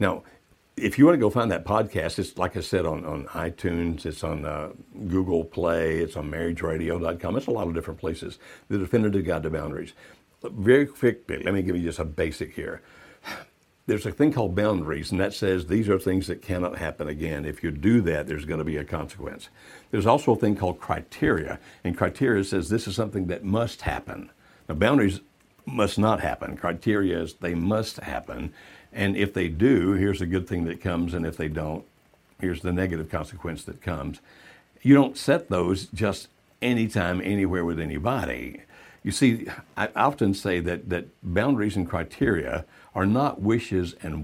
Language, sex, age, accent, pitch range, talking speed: English, male, 60-79, American, 85-105 Hz, 185 wpm